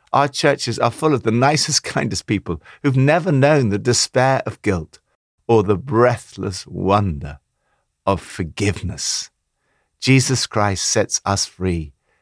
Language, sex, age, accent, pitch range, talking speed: English, male, 60-79, British, 95-135 Hz, 135 wpm